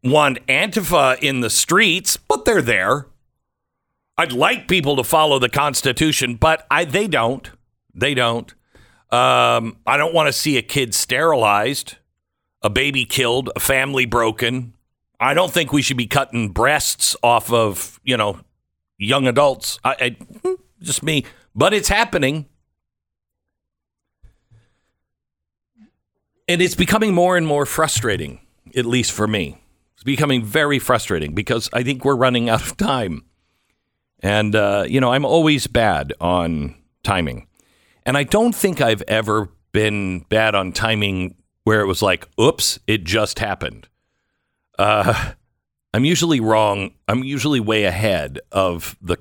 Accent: American